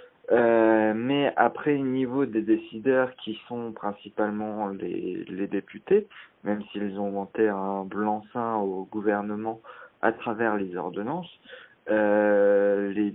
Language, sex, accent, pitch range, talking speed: French, male, French, 105-120 Hz, 120 wpm